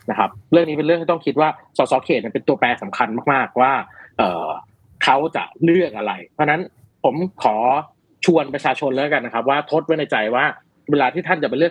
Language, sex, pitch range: Thai, male, 130-175 Hz